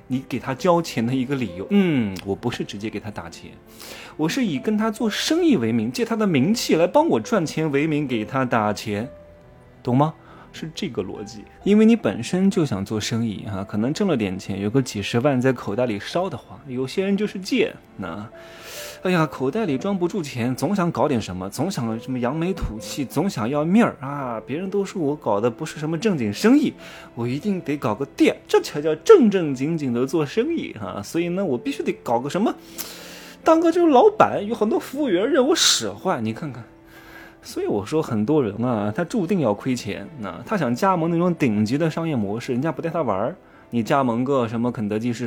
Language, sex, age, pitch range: Chinese, male, 20-39, 115-195 Hz